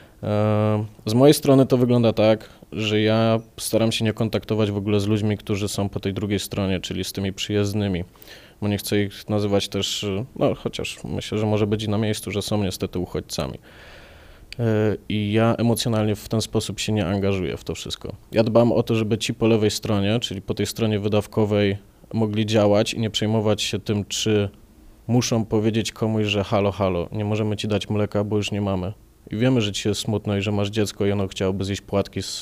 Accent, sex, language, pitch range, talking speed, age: native, male, Polish, 100-110 Hz, 200 wpm, 20-39